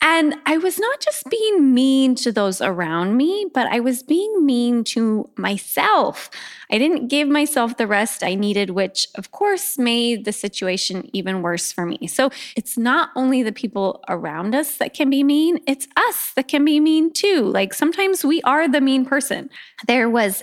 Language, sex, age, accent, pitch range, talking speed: English, female, 20-39, American, 195-280 Hz, 190 wpm